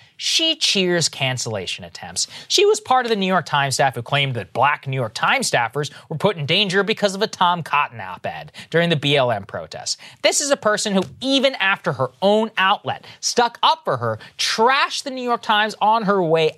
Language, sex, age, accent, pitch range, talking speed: English, male, 30-49, American, 165-260 Hz, 205 wpm